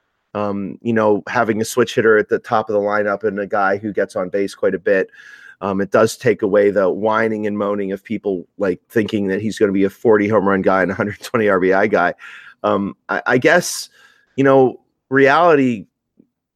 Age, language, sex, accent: 40-59, English, male, American